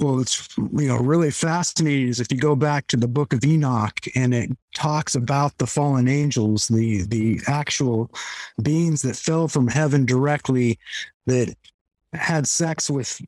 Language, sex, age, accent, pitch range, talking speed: English, male, 50-69, American, 125-155 Hz, 165 wpm